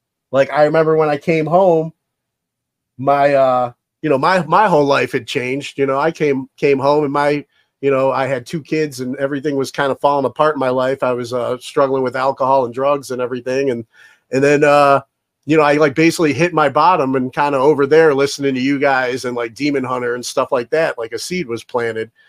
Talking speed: 230 wpm